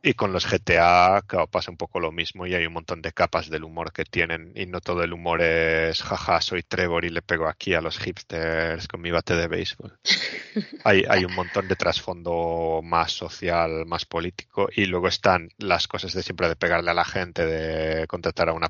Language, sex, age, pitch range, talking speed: Spanish, male, 30-49, 85-95 Hz, 220 wpm